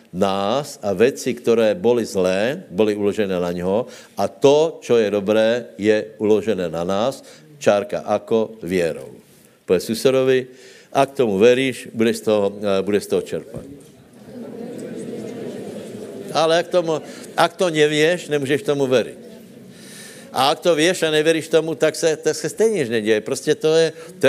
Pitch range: 105-160 Hz